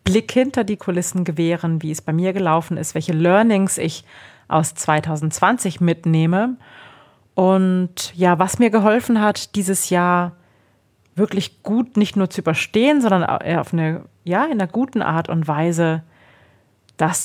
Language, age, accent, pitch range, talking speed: German, 30-49, German, 160-200 Hz, 145 wpm